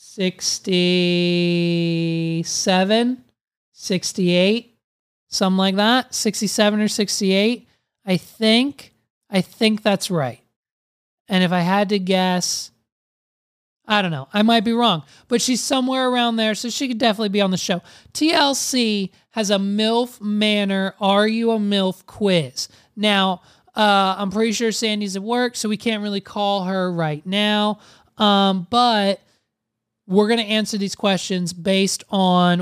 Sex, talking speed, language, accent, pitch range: male, 140 wpm, English, American, 180-215 Hz